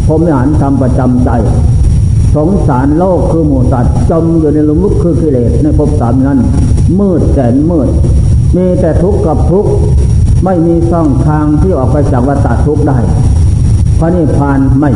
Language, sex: Thai, male